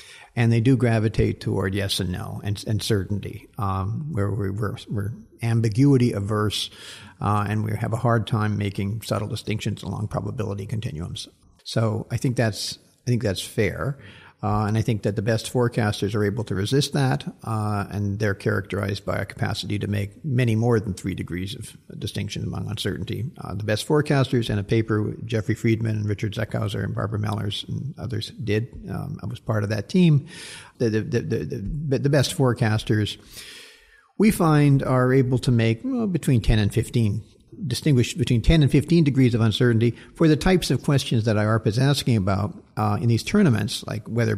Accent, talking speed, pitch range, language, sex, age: American, 185 wpm, 105-135 Hz, English, male, 50-69